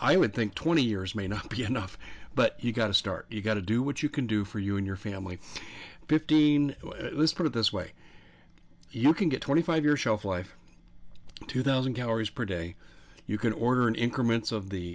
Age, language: 50-69, English